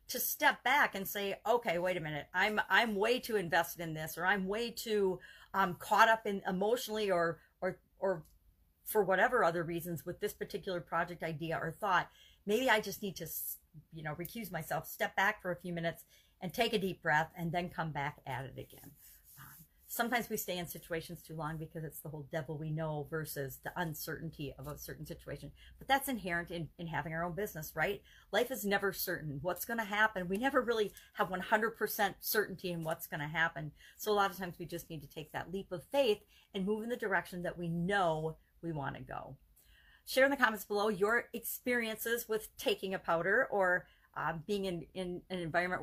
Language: English